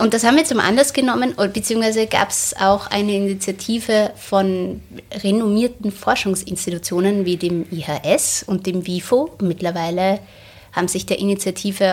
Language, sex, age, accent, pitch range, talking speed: German, female, 20-39, German, 175-210 Hz, 135 wpm